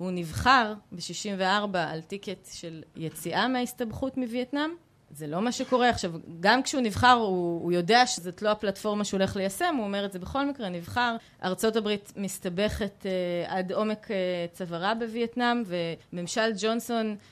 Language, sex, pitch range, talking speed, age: Hebrew, female, 180-235 Hz, 150 wpm, 20-39